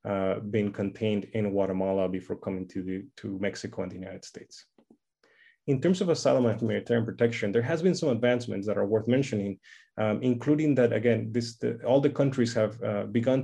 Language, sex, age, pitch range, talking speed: English, male, 30-49, 105-120 Hz, 190 wpm